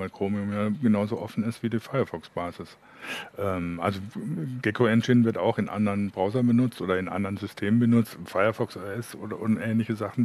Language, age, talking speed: German, 50-69, 170 wpm